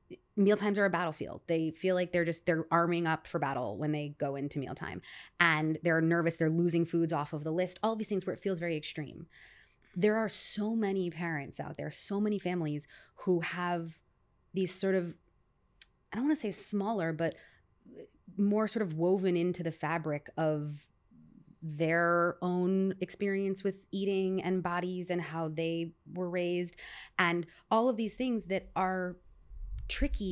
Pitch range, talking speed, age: 160-190 Hz, 170 wpm, 20-39